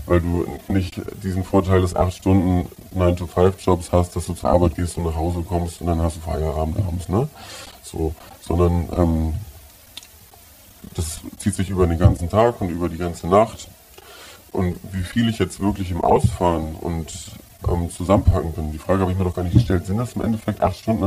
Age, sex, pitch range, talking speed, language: 20-39, female, 90-100 Hz, 195 wpm, German